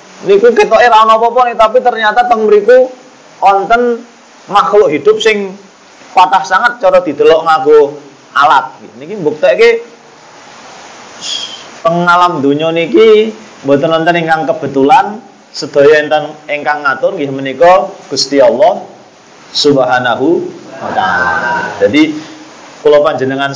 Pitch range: 150-220 Hz